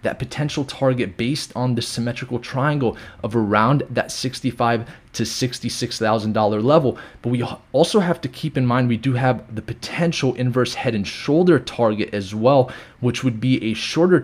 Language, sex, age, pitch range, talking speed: English, male, 20-39, 115-145 Hz, 185 wpm